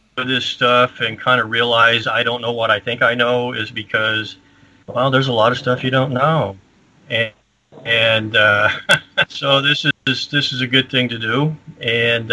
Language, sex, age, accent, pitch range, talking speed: English, male, 40-59, American, 110-130 Hz, 190 wpm